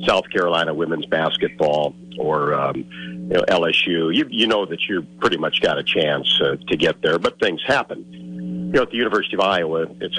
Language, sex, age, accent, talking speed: English, male, 50-69, American, 190 wpm